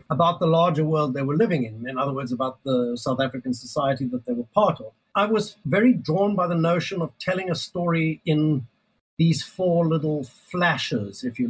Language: English